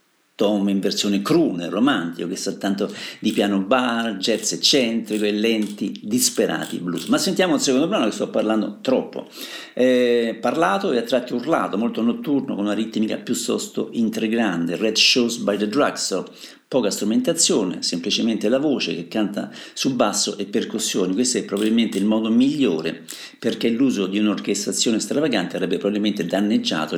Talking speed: 155 wpm